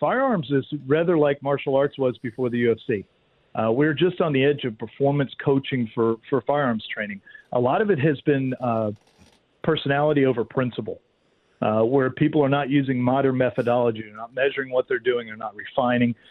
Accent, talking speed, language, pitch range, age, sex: American, 185 wpm, English, 120-145 Hz, 50-69, male